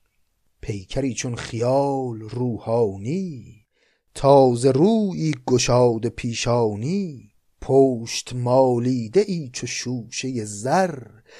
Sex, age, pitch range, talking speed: male, 30-49, 120-160 Hz, 75 wpm